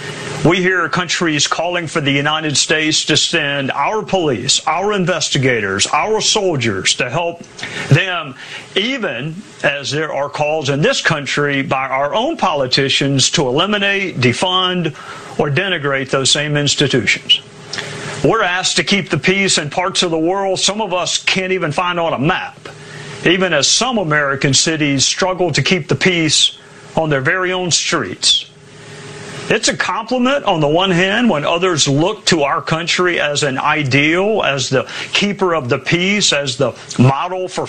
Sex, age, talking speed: male, 50-69, 160 wpm